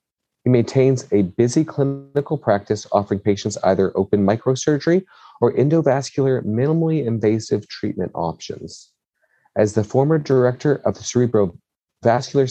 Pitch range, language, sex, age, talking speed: 100-125 Hz, English, male, 40-59, 115 wpm